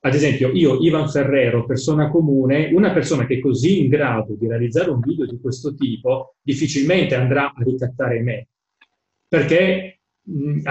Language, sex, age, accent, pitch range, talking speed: Italian, male, 30-49, native, 125-150 Hz, 155 wpm